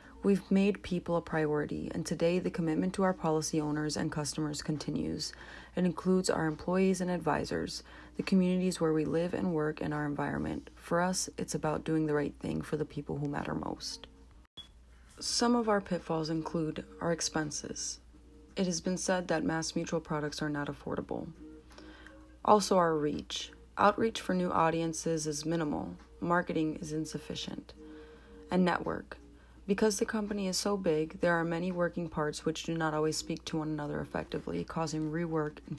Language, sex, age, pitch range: English, female, 30-49, 150-180 Hz